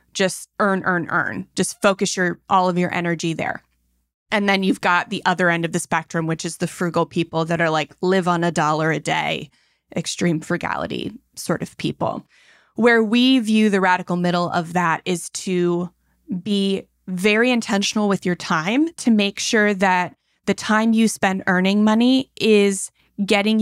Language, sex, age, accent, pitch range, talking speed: English, female, 20-39, American, 175-220 Hz, 175 wpm